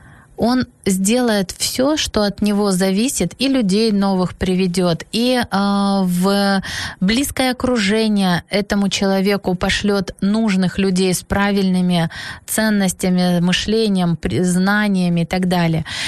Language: Ukrainian